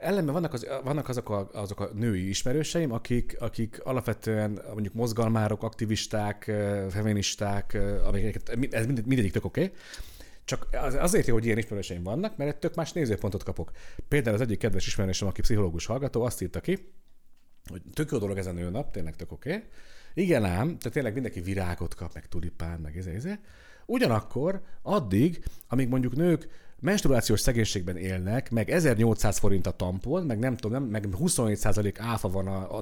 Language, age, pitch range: Hungarian, 40-59, 100-135 Hz